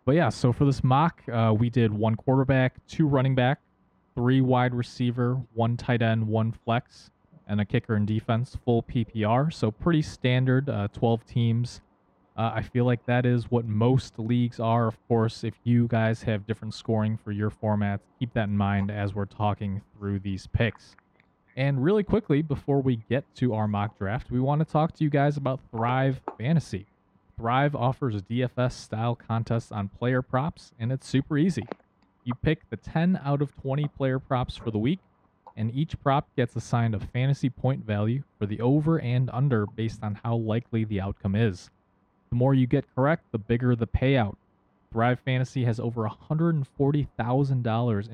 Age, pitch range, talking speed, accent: 20-39, 110-130 Hz, 180 wpm, American